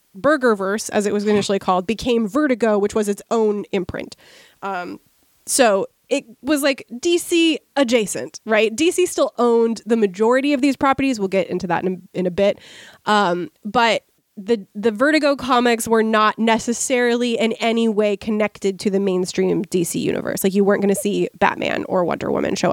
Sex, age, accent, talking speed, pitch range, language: female, 20-39, American, 175 wpm, 205-260 Hz, English